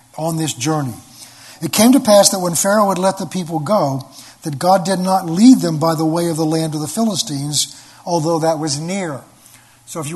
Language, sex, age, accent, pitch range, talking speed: English, male, 50-69, American, 145-190 Hz, 220 wpm